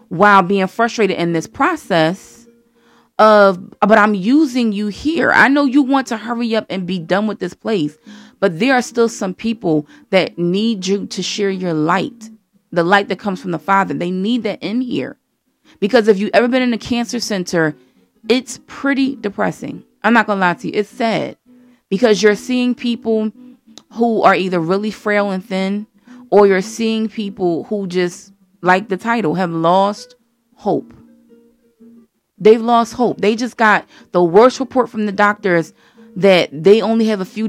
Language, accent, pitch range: English, American, 195-230 Hz